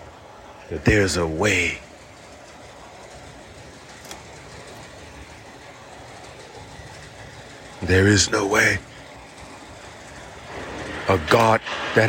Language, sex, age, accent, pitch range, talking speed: English, male, 50-69, American, 100-125 Hz, 55 wpm